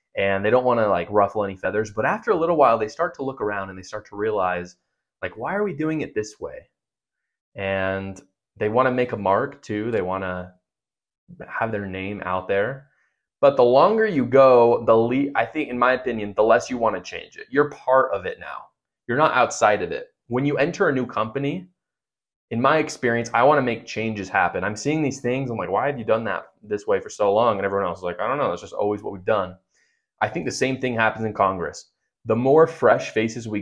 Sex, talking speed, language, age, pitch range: male, 235 wpm, English, 20-39, 95-125 Hz